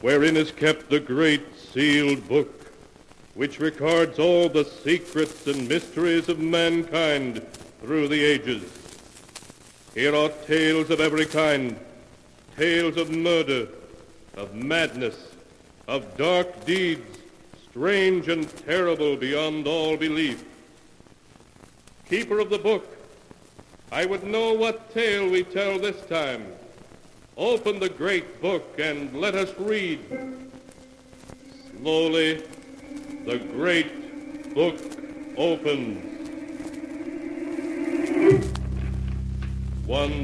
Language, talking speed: English, 100 wpm